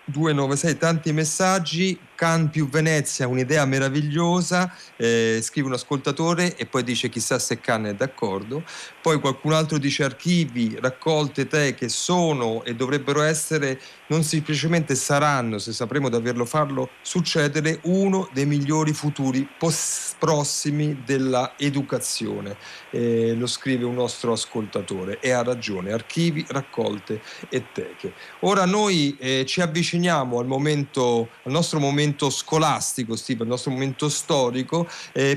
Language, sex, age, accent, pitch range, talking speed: Italian, male, 40-59, native, 125-155 Hz, 130 wpm